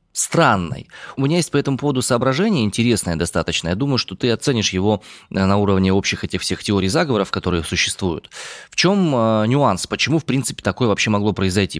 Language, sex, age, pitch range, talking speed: Russian, male, 20-39, 95-130 Hz, 185 wpm